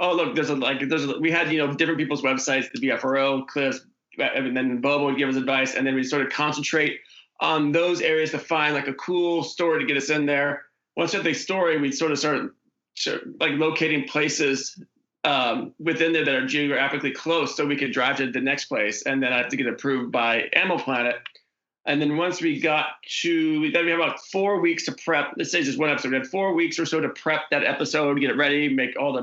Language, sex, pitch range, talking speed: English, male, 135-160 Hz, 240 wpm